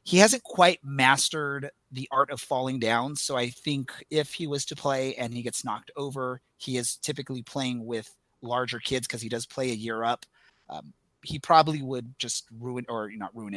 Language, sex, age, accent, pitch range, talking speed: English, male, 30-49, American, 115-155 Hz, 200 wpm